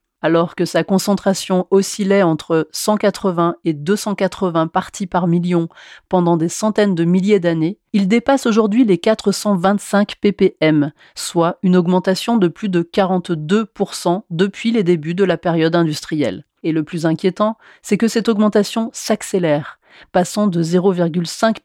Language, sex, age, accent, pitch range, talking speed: French, female, 30-49, French, 170-215 Hz, 140 wpm